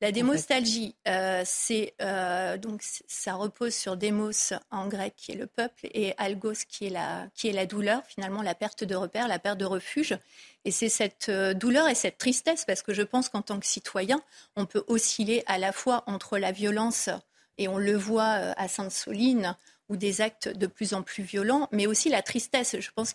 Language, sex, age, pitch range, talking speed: French, female, 40-59, 195-235 Hz, 200 wpm